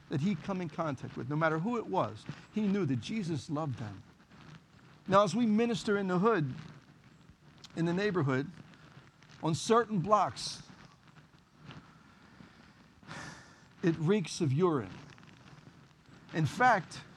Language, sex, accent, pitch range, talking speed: English, male, American, 145-185 Hz, 125 wpm